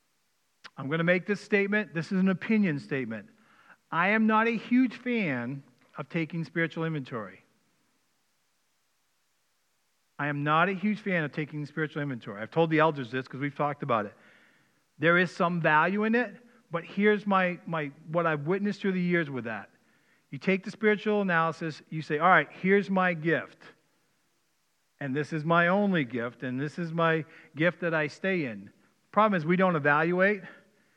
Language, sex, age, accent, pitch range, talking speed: English, male, 50-69, American, 150-195 Hz, 175 wpm